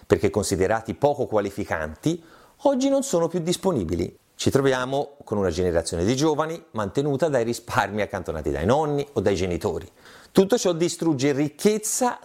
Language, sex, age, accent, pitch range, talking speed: Italian, male, 30-49, native, 120-190 Hz, 140 wpm